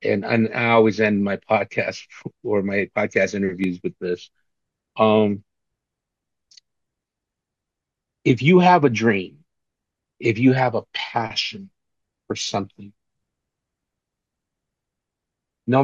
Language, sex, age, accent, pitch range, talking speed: English, male, 50-69, American, 105-120 Hz, 100 wpm